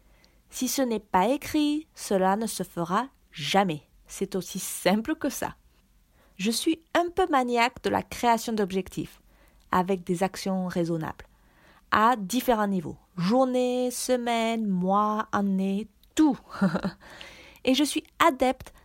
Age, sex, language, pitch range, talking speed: 30-49, female, French, 185-255 Hz, 125 wpm